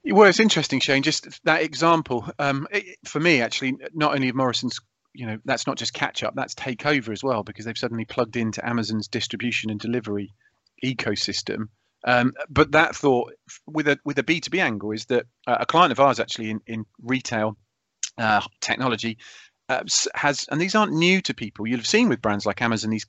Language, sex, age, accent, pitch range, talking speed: English, male, 40-59, British, 110-140 Hz, 200 wpm